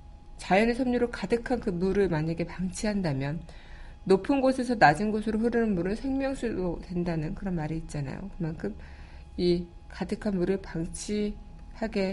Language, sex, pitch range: Korean, female, 160-200 Hz